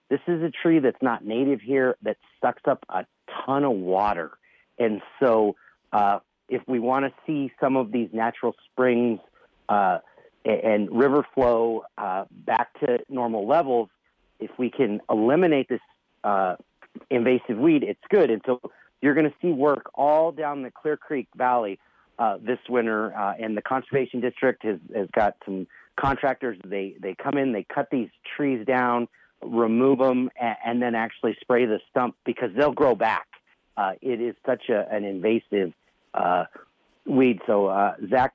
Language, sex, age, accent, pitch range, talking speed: English, male, 40-59, American, 105-130 Hz, 165 wpm